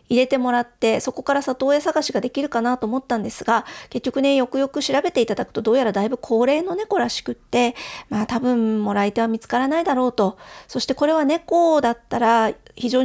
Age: 40-59